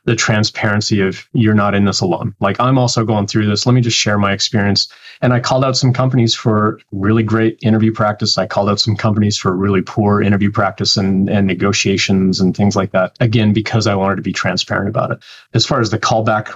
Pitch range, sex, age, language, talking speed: 100-115 Hz, male, 30-49, English, 225 wpm